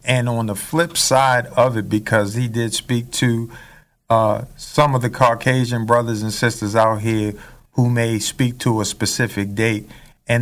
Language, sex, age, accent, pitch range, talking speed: English, male, 50-69, American, 115-145 Hz, 175 wpm